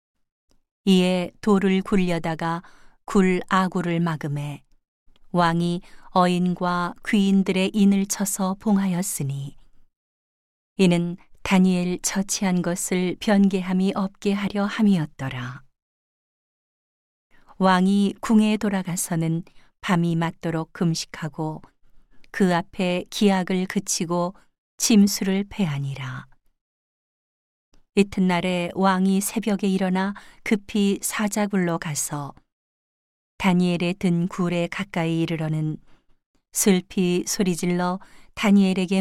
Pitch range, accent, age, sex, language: 165-195 Hz, native, 40-59, female, Korean